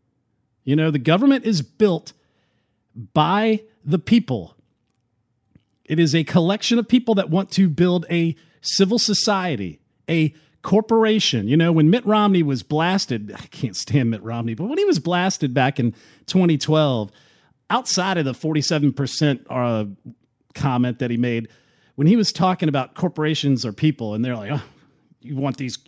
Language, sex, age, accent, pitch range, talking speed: English, male, 40-59, American, 135-185 Hz, 155 wpm